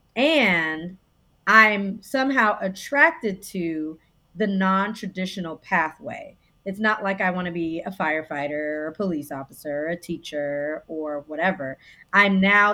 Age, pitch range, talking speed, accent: 30-49, 165-215 Hz, 130 wpm, American